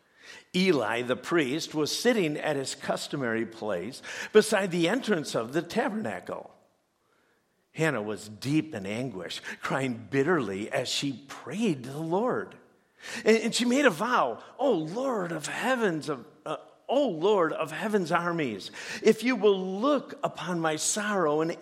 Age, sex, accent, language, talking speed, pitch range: 50-69, male, American, English, 145 wpm, 130-210 Hz